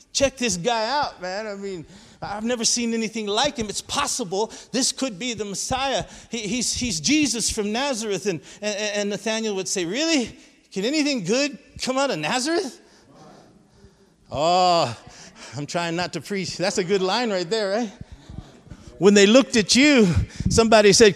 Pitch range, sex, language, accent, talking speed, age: 180-245 Hz, male, English, American, 170 wpm, 50-69